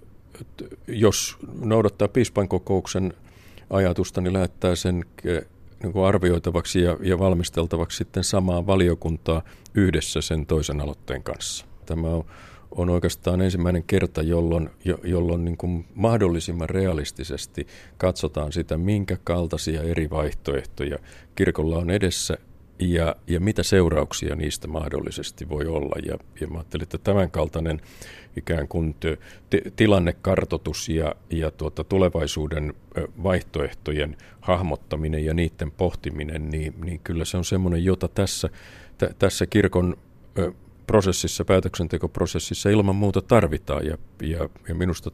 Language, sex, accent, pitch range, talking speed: Finnish, male, native, 80-95 Hz, 110 wpm